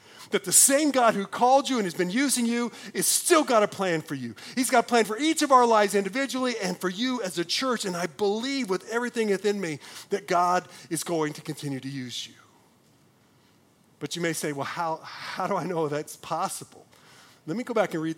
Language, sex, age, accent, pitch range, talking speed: English, male, 40-59, American, 175-245 Hz, 230 wpm